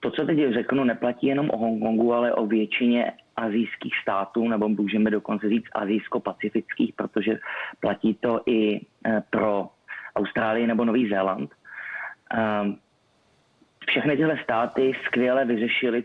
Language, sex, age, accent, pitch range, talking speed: Czech, male, 30-49, native, 105-120 Hz, 125 wpm